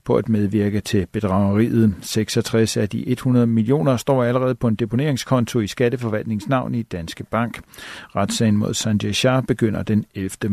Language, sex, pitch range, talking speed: Danish, male, 110-130 Hz, 155 wpm